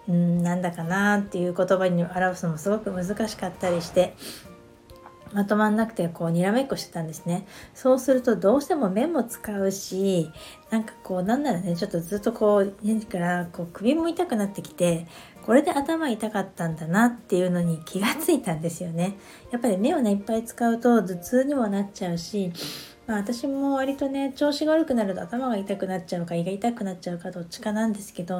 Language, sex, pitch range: Japanese, female, 185-270 Hz